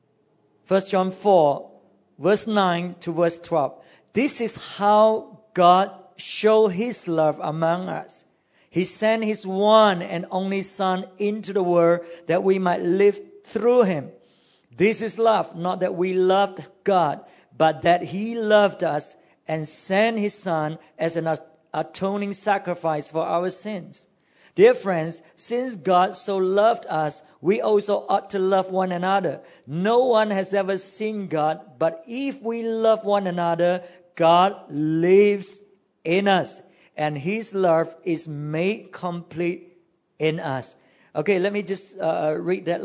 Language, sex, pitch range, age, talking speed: English, male, 165-200 Hz, 50-69, 145 wpm